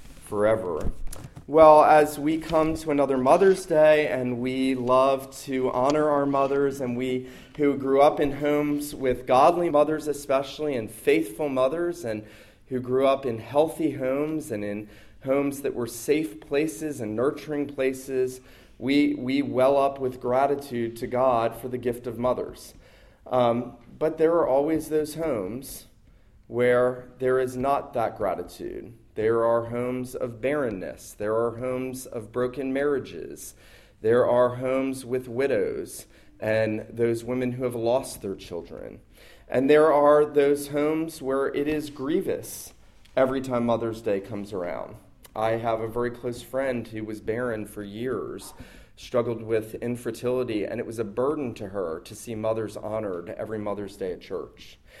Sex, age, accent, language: male, 30-49, American, English